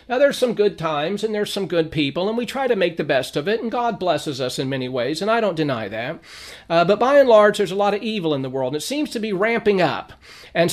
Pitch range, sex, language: 155-210 Hz, male, English